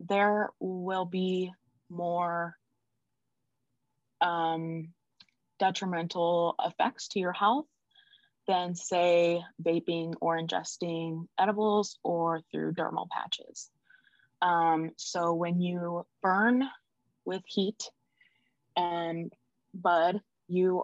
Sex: female